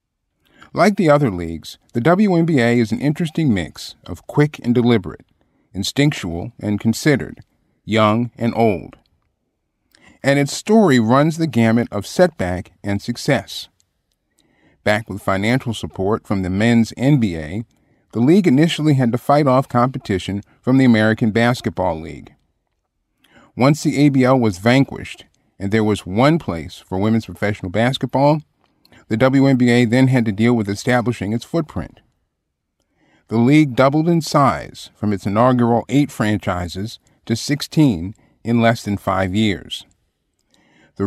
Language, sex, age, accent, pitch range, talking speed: English, male, 40-59, American, 105-140 Hz, 135 wpm